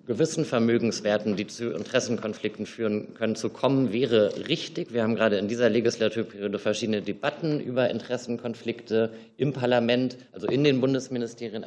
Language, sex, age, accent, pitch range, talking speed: German, male, 50-69, German, 105-125 Hz, 140 wpm